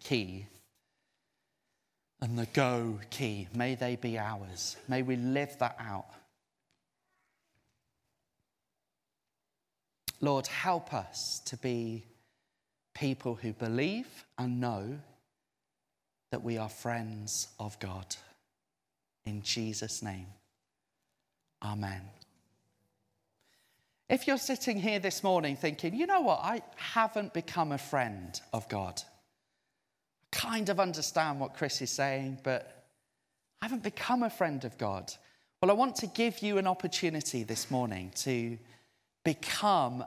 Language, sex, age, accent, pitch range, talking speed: English, male, 30-49, British, 115-190 Hz, 115 wpm